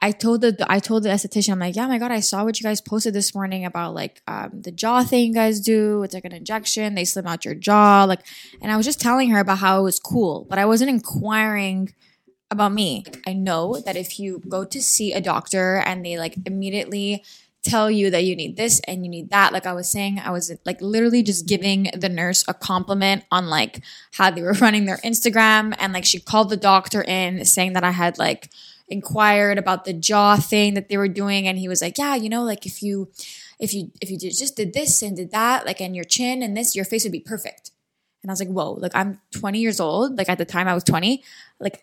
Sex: female